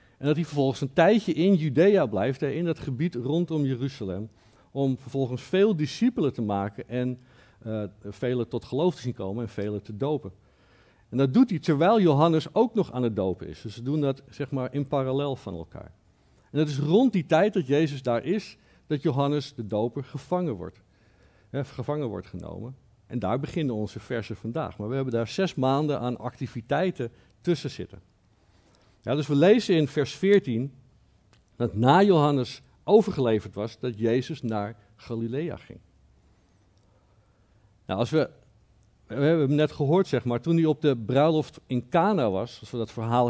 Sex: male